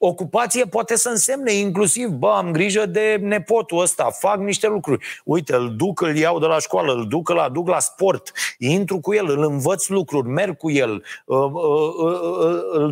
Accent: native